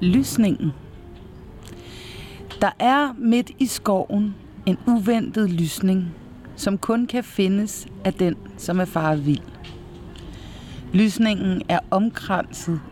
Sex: female